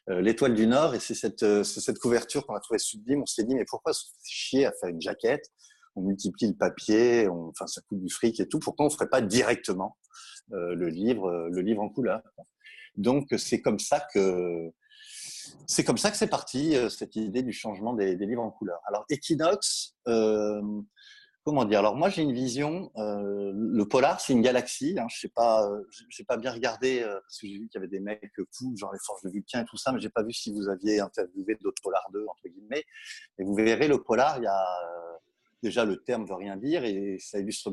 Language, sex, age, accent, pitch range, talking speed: French, male, 30-49, French, 100-145 Hz, 240 wpm